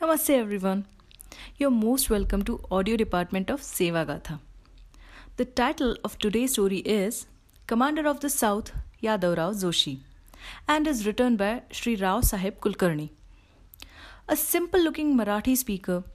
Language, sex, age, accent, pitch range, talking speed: Hindi, female, 30-49, native, 195-265 Hz, 135 wpm